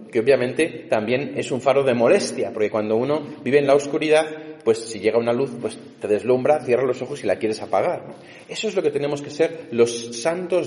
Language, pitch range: Spanish, 120-165 Hz